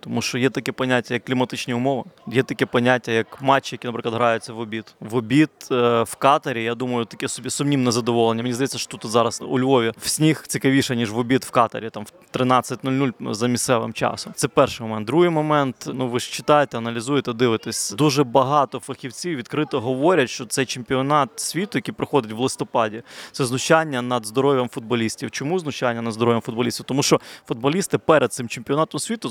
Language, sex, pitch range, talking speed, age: Ukrainian, male, 120-150 Hz, 185 wpm, 20-39